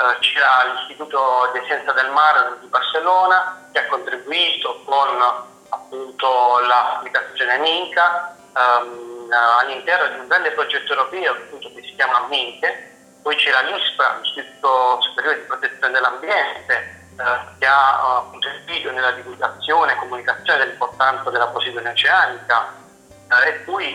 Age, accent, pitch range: 40-59, native, 125-150 Hz